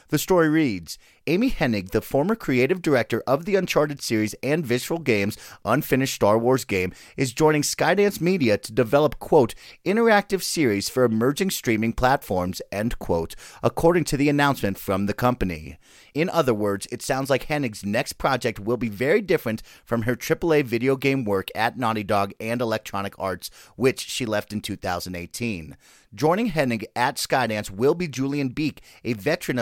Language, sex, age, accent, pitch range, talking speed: English, male, 30-49, American, 110-145 Hz, 165 wpm